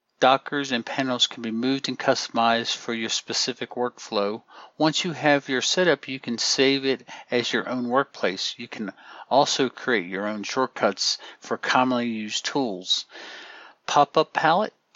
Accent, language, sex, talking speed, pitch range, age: American, English, male, 155 wpm, 120-155 Hz, 50-69